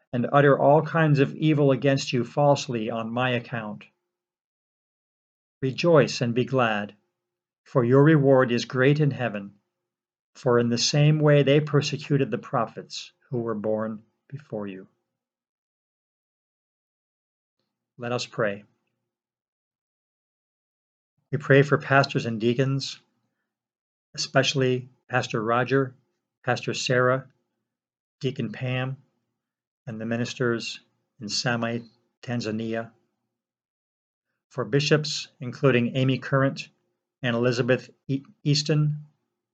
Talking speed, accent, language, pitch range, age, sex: 100 wpm, American, English, 115-140 Hz, 50-69, male